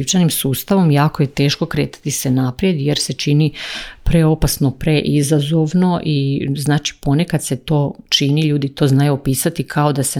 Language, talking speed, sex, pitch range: Croatian, 155 wpm, female, 140-165 Hz